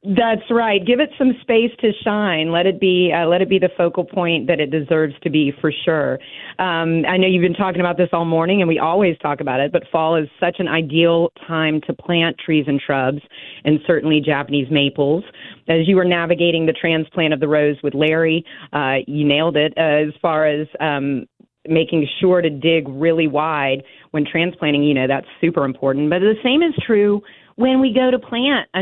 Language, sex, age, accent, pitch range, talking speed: English, female, 40-59, American, 155-185 Hz, 210 wpm